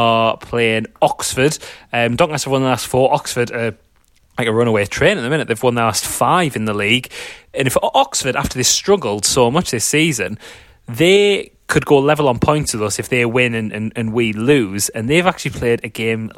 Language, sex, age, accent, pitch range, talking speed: English, male, 30-49, British, 115-140 Hz, 215 wpm